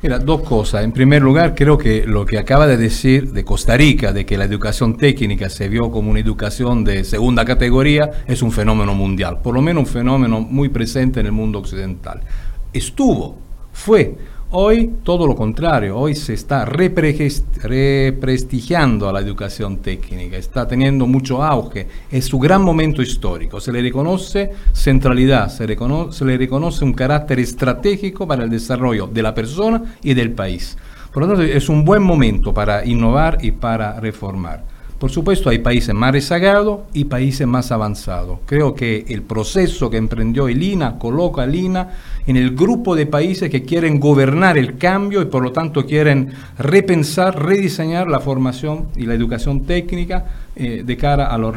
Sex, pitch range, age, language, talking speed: male, 110-150 Hz, 50-69, Spanish, 175 wpm